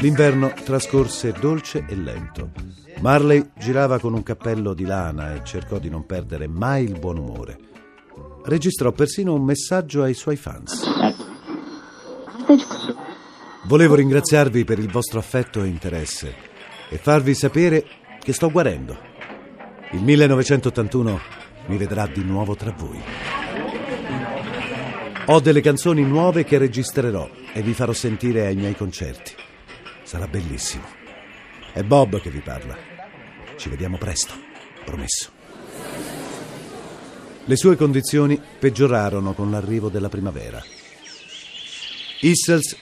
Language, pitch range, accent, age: Italian, 90-140 Hz, native, 50-69